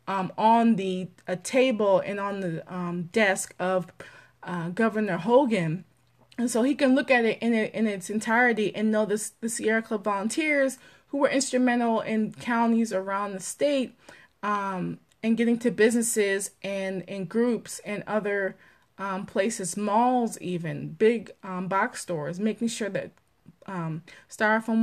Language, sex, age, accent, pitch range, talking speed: English, female, 20-39, American, 185-225 Hz, 150 wpm